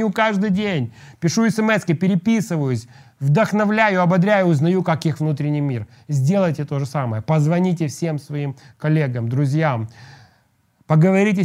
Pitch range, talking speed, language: 145-185 Hz, 115 wpm, Russian